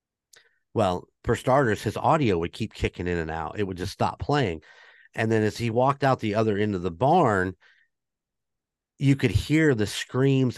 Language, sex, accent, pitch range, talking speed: English, male, American, 100-125 Hz, 185 wpm